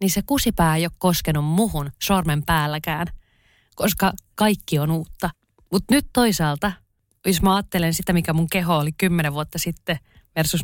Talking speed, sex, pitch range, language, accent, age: 160 wpm, female, 150-190 Hz, Finnish, native, 30-49